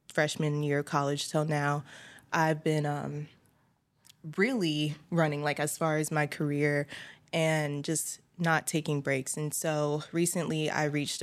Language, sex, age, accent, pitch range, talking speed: English, female, 20-39, American, 150-165 Hz, 145 wpm